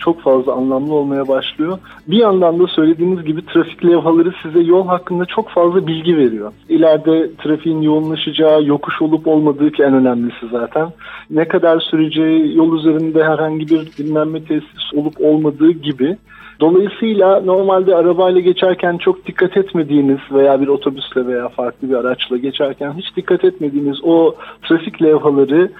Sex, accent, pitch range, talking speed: male, native, 140-165 Hz, 145 wpm